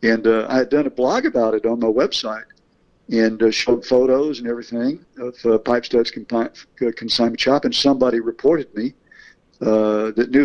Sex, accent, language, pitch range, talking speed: male, American, English, 115-130 Hz, 180 wpm